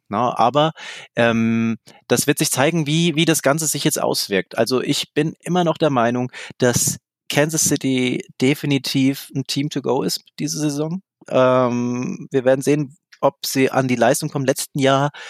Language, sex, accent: German, male, German